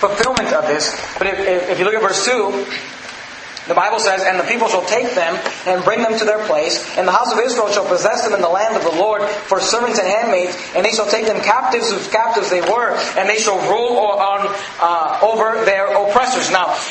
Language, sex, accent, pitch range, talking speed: English, male, American, 205-240 Hz, 225 wpm